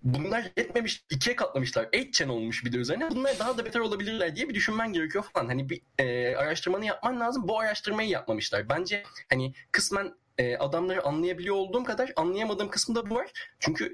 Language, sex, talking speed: Turkish, male, 180 wpm